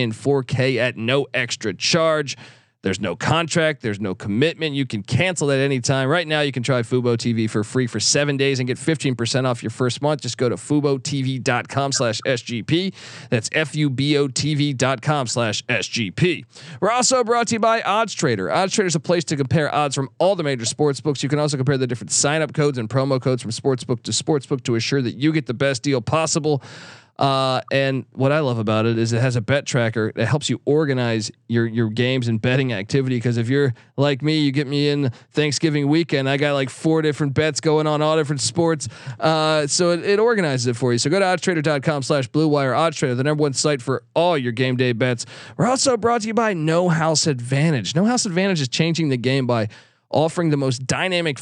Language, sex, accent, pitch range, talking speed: English, male, American, 125-155 Hz, 225 wpm